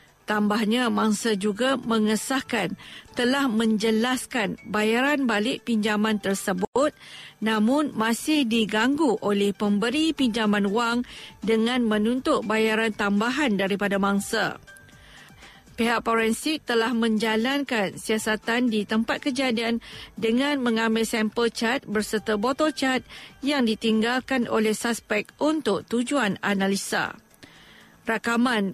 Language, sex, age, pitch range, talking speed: Malay, female, 50-69, 215-250 Hz, 95 wpm